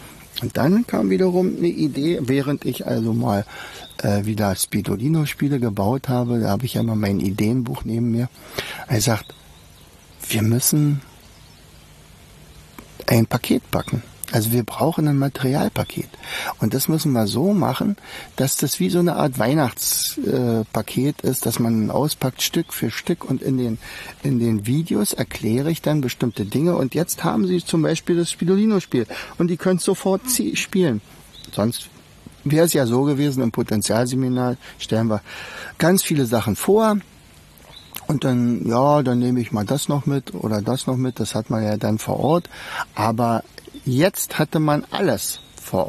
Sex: male